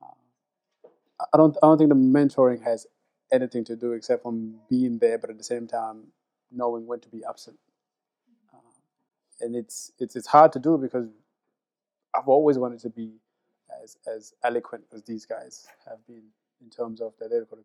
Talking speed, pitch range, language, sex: 175 wpm, 120-150 Hz, English, male